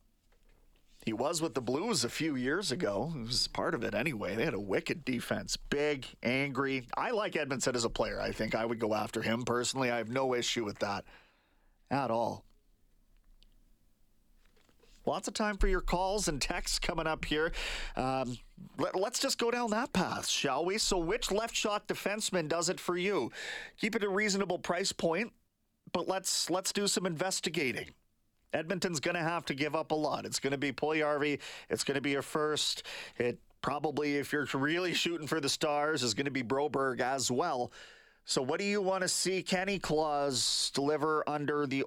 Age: 40-59